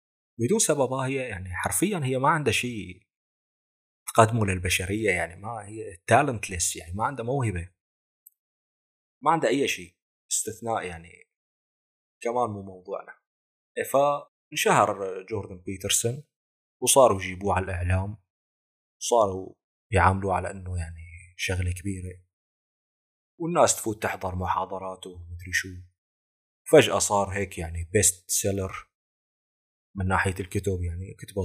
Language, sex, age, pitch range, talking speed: Arabic, male, 30-49, 90-110 Hz, 115 wpm